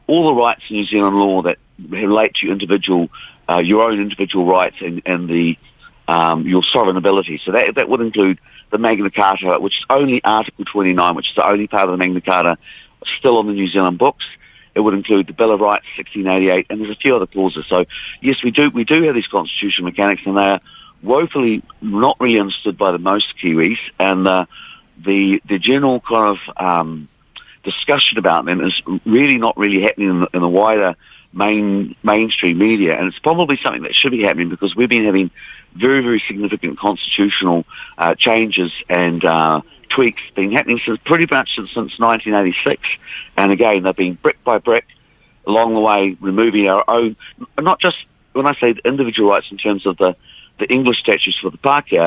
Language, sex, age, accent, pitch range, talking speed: English, male, 50-69, British, 90-110 Hz, 200 wpm